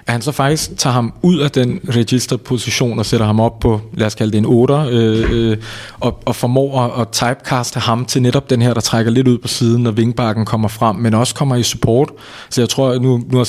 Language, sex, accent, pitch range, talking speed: Danish, male, native, 110-130 Hz, 240 wpm